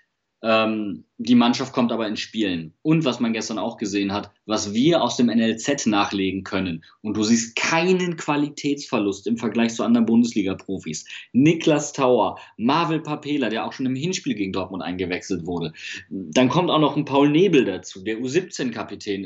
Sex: male